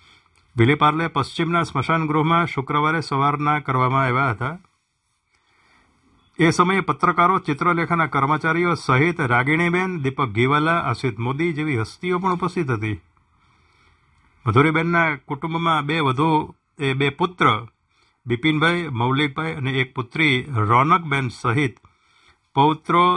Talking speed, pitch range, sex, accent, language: 105 wpm, 115-155 Hz, male, native, Gujarati